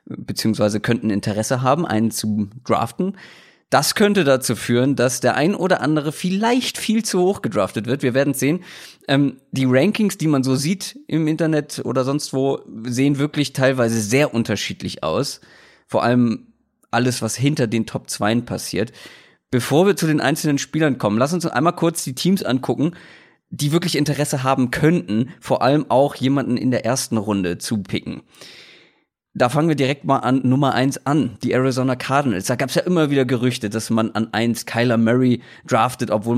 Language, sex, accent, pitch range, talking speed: German, male, German, 120-160 Hz, 175 wpm